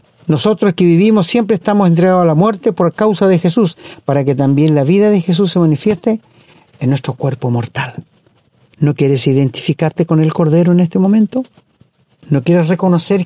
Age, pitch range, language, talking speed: 50-69, 150-205 Hz, Spanish, 170 wpm